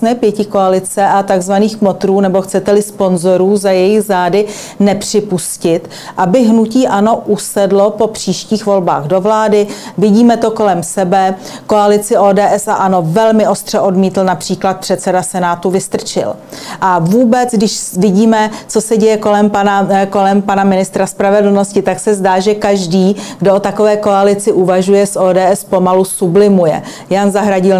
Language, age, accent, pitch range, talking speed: Czech, 40-59, native, 185-215 Hz, 140 wpm